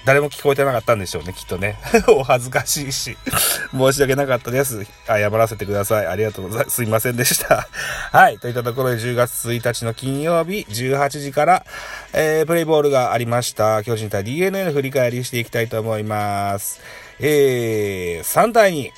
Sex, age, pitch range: male, 40-59, 110-155 Hz